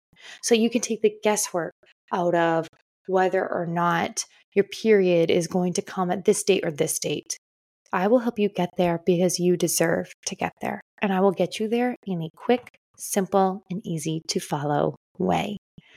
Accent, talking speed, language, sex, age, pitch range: American, 190 wpm, English, female, 20-39, 180-240 Hz